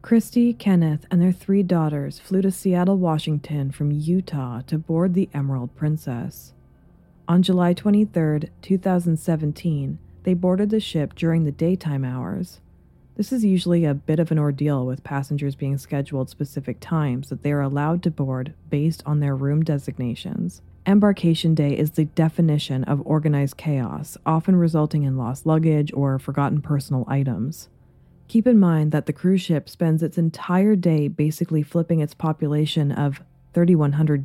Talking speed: 155 wpm